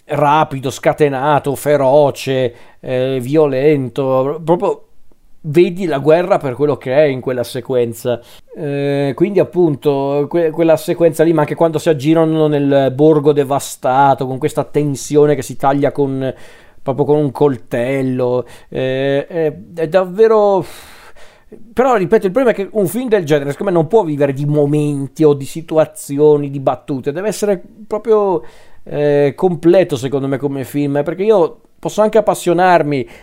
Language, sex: Italian, male